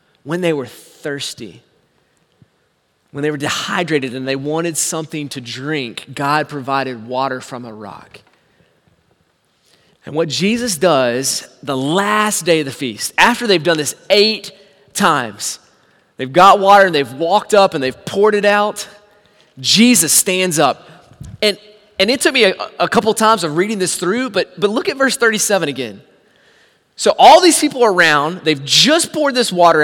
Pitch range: 165-275 Hz